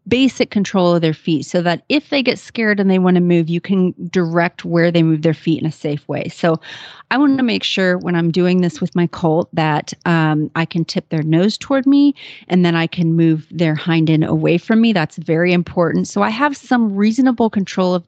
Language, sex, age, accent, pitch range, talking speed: English, female, 30-49, American, 160-200 Hz, 235 wpm